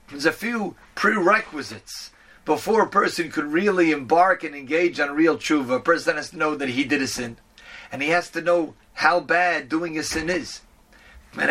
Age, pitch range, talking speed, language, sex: 40-59, 140-180 Hz, 200 wpm, English, male